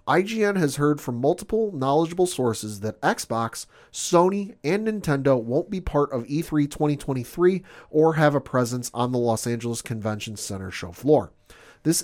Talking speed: 155 wpm